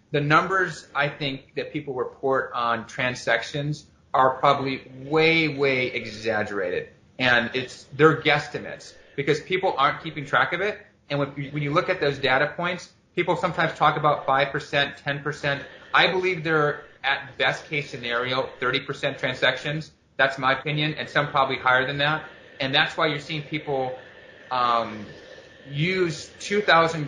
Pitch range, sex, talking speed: 135-160 Hz, male, 145 wpm